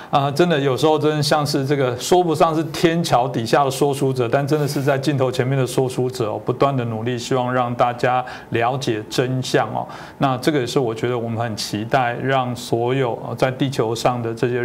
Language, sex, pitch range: Chinese, male, 115-135 Hz